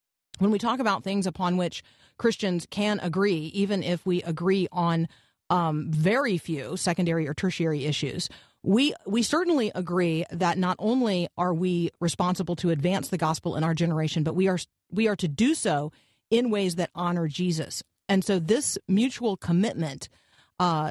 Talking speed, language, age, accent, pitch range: 165 wpm, English, 40-59, American, 170-205 Hz